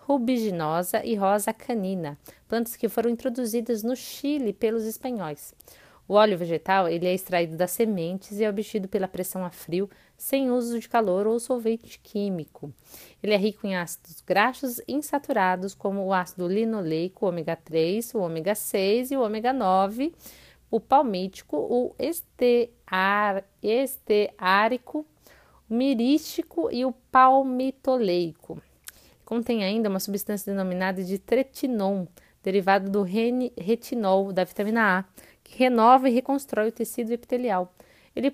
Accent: Brazilian